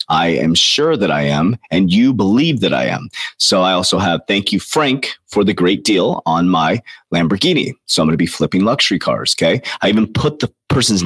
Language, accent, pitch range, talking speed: English, American, 85-105 Hz, 215 wpm